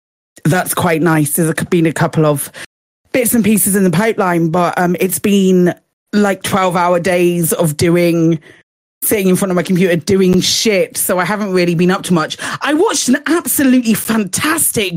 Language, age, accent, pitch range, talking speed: English, 30-49, British, 175-220 Hz, 180 wpm